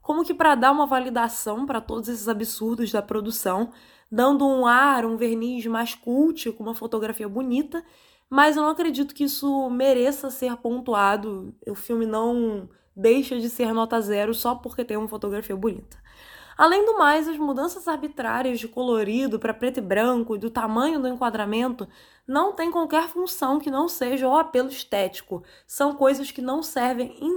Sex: female